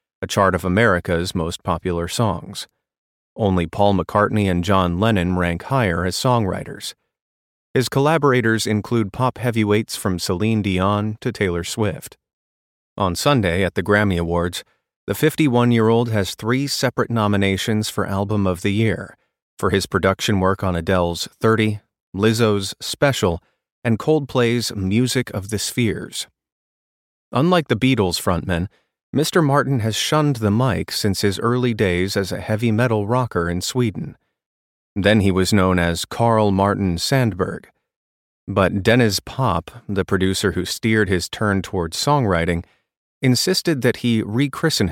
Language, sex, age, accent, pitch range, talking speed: English, male, 30-49, American, 90-120 Hz, 140 wpm